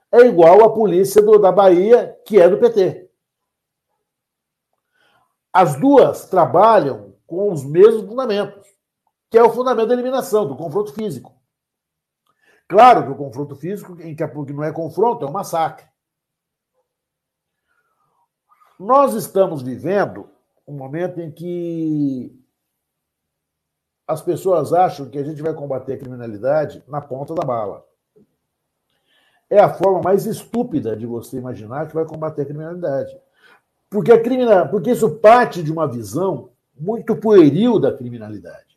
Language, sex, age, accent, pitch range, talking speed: Portuguese, male, 60-79, Brazilian, 150-220 Hz, 130 wpm